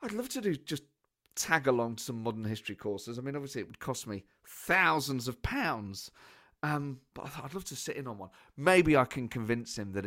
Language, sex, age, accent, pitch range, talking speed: English, male, 40-59, British, 100-145 Hz, 215 wpm